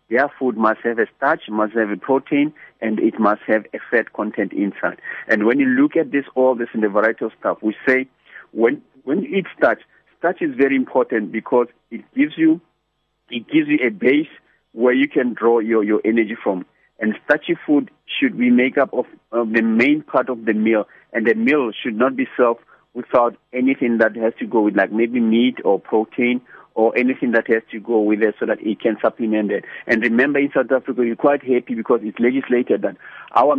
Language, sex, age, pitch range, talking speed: English, male, 50-69, 115-145 Hz, 215 wpm